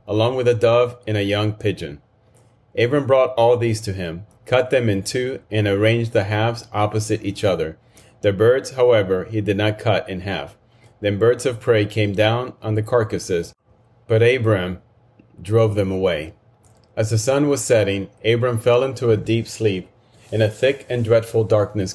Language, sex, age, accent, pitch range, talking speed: English, male, 30-49, American, 105-120 Hz, 180 wpm